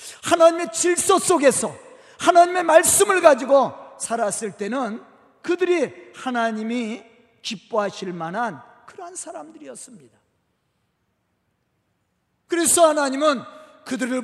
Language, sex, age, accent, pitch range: Korean, male, 40-59, native, 235-345 Hz